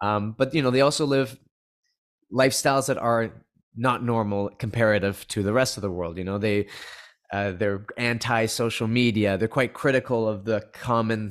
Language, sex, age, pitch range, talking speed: English, male, 30-49, 110-135 Hz, 165 wpm